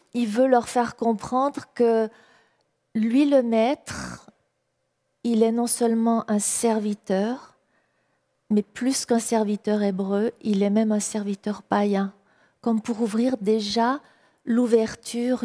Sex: female